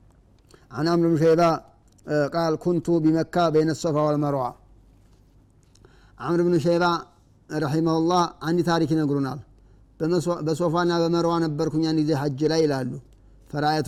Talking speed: 110 wpm